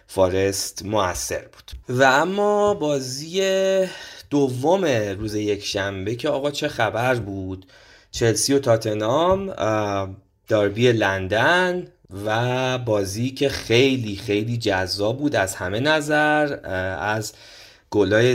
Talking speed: 105 wpm